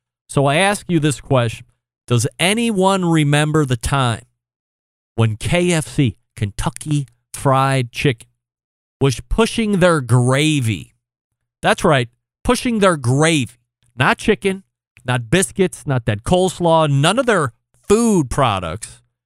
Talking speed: 115 wpm